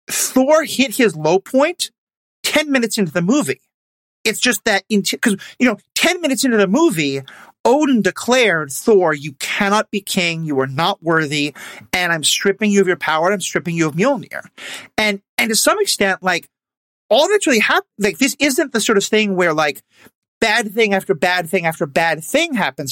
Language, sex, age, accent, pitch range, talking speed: English, male, 40-59, American, 160-225 Hz, 190 wpm